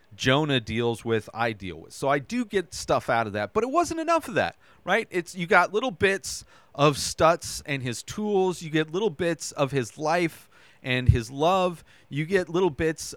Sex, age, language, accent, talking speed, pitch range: male, 30-49, English, American, 205 wpm, 125-170 Hz